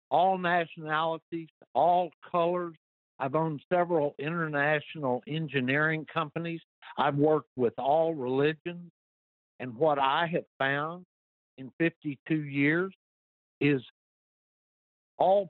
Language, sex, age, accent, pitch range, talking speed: English, male, 60-79, American, 130-175 Hz, 100 wpm